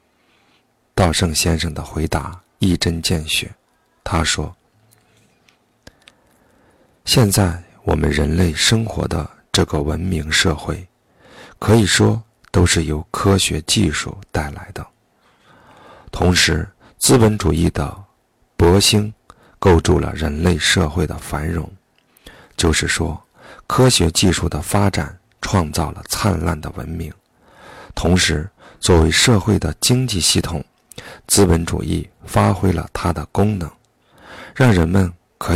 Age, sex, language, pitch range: 50-69, male, Chinese, 80-105 Hz